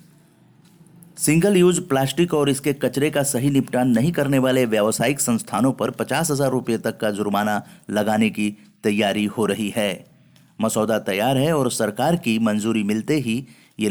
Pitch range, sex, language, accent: 105-155 Hz, male, Hindi, native